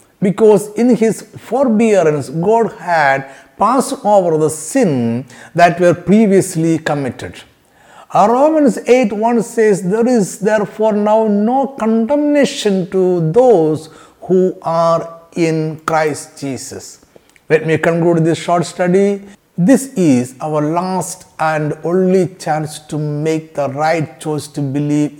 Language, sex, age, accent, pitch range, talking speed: Malayalam, male, 60-79, native, 135-195 Hz, 120 wpm